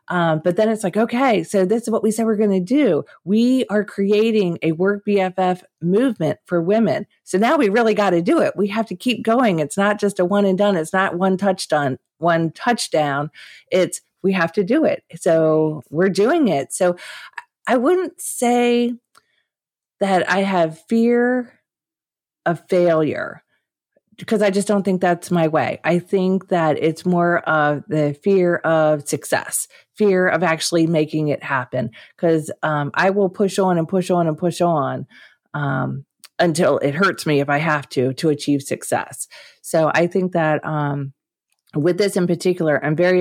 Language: English